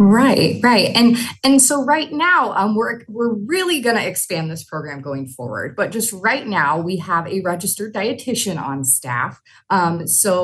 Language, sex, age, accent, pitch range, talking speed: English, female, 30-49, American, 175-240 Hz, 170 wpm